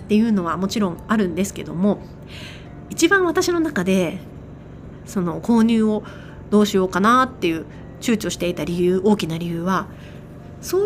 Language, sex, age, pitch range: Japanese, female, 30-49, 180-255 Hz